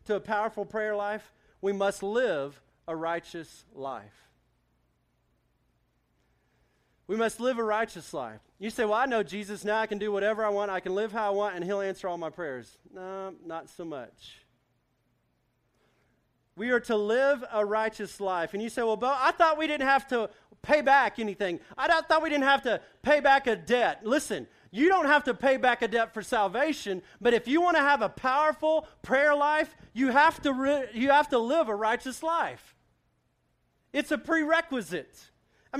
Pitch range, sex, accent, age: 200-270 Hz, male, American, 40-59